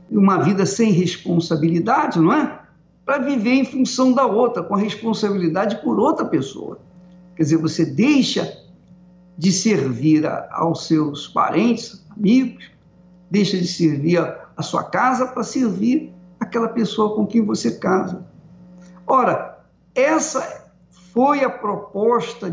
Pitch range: 175-230 Hz